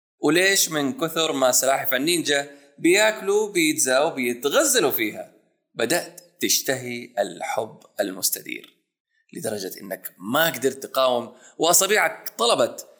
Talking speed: 95 wpm